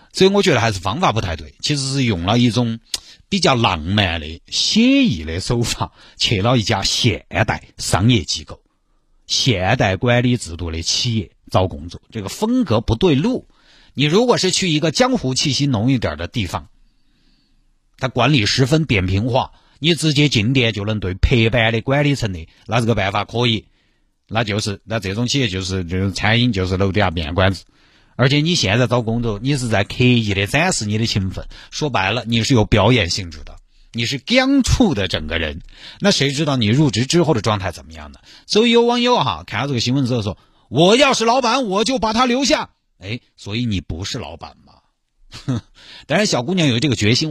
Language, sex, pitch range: Chinese, male, 100-140 Hz